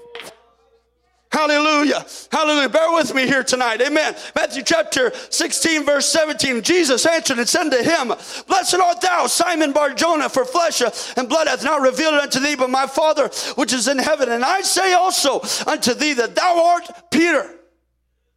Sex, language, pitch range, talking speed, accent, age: male, English, 260-340 Hz, 165 wpm, American, 40-59